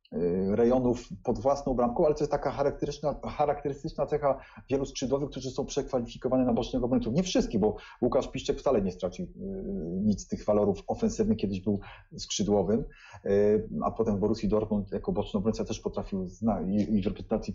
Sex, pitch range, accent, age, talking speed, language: male, 110-150 Hz, native, 30-49, 160 wpm, Polish